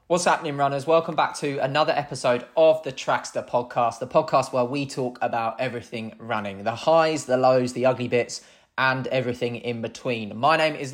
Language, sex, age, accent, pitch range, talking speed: English, male, 20-39, British, 125-150 Hz, 185 wpm